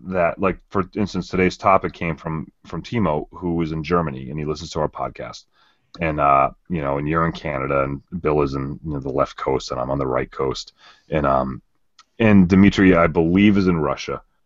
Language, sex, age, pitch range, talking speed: English, male, 30-49, 75-105 Hz, 215 wpm